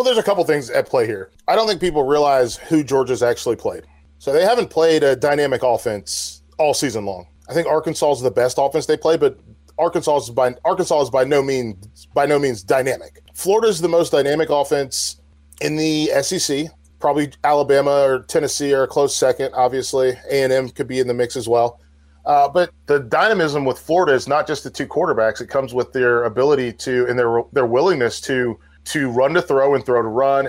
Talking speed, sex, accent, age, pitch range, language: 210 wpm, male, American, 30-49, 115-155 Hz, English